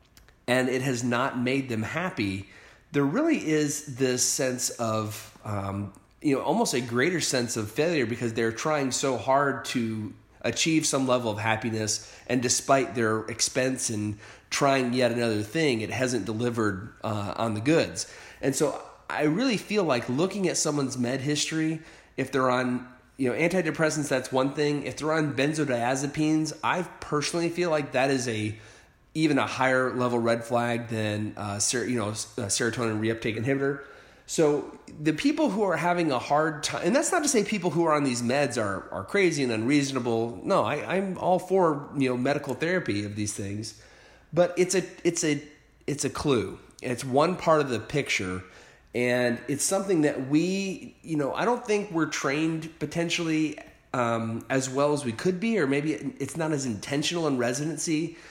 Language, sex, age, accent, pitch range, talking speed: English, male, 30-49, American, 115-155 Hz, 180 wpm